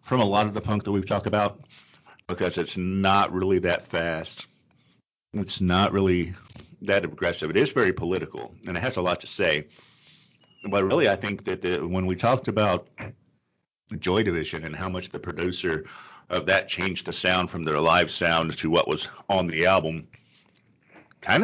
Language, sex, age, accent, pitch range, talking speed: English, male, 50-69, American, 85-105 Hz, 180 wpm